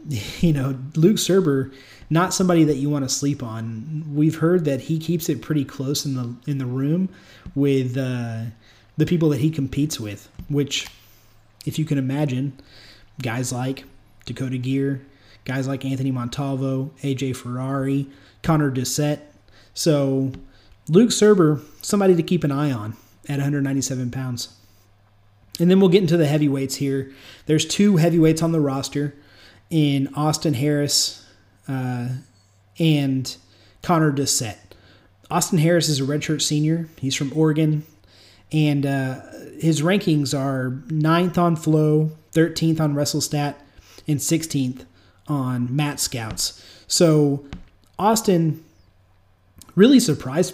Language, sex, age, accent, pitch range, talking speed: English, male, 30-49, American, 120-155 Hz, 135 wpm